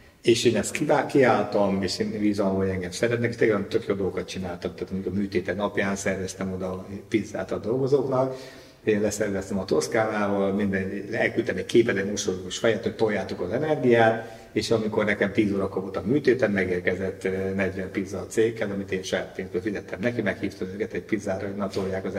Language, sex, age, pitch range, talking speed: Hungarian, male, 50-69, 95-115 Hz, 165 wpm